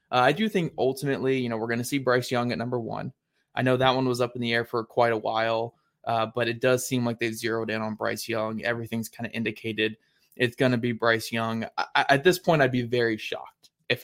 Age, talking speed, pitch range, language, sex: 20-39, 250 wpm, 115-140 Hz, English, male